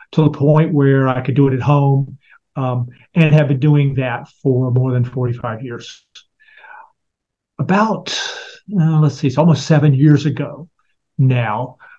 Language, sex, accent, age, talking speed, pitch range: English, male, American, 50-69, 155 wpm, 125-145 Hz